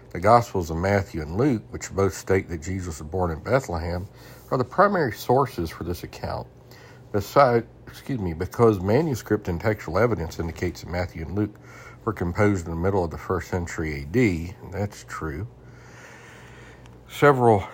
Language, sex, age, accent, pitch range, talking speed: English, male, 60-79, American, 85-115 Hz, 165 wpm